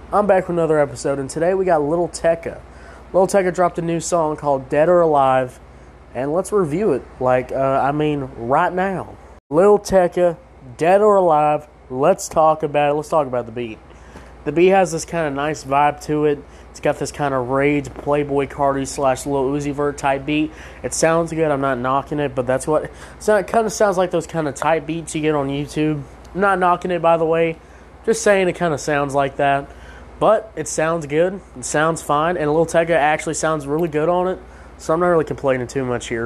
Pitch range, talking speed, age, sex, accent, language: 125-165 Hz, 220 wpm, 20-39, male, American, English